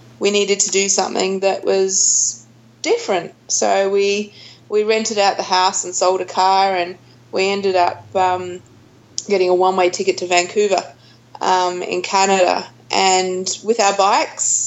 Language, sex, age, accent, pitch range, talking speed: English, female, 20-39, Australian, 180-205 Hz, 150 wpm